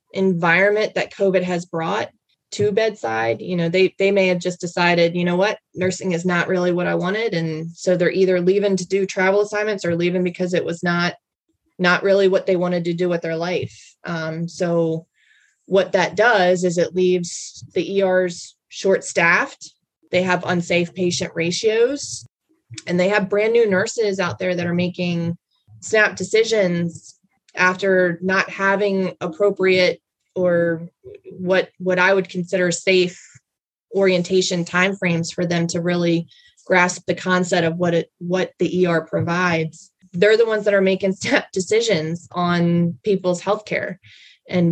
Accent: American